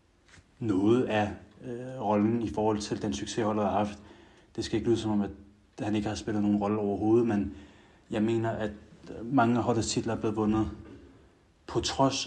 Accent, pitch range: native, 100-115 Hz